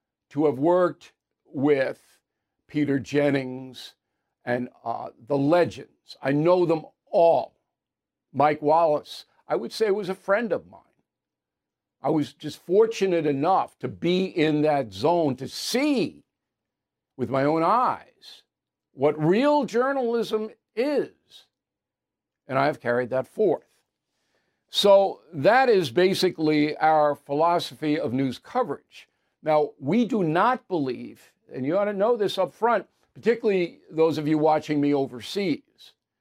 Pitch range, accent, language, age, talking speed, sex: 140-195 Hz, American, English, 60-79, 130 wpm, male